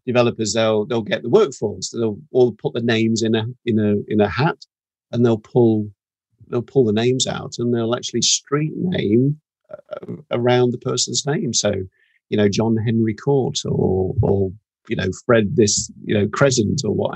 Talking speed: 185 wpm